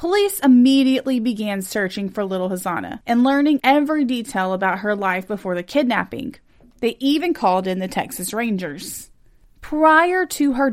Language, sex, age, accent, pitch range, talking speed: English, female, 30-49, American, 200-280 Hz, 150 wpm